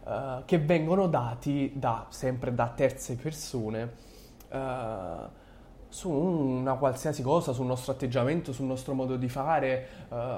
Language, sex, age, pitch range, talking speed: Italian, male, 20-39, 135-190 Hz, 135 wpm